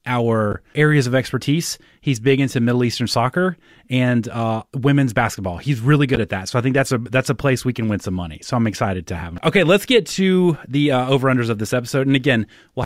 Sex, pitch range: male, 105-135 Hz